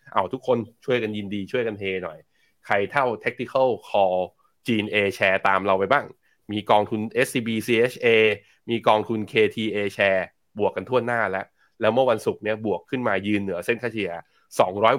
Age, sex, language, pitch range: 20-39, male, Thai, 100-120 Hz